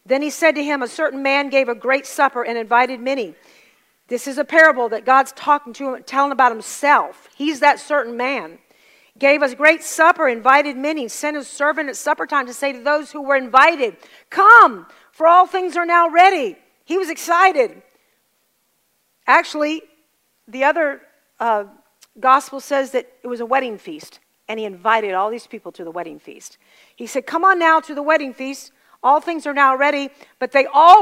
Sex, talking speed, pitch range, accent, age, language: female, 195 wpm, 250-305 Hz, American, 50-69, English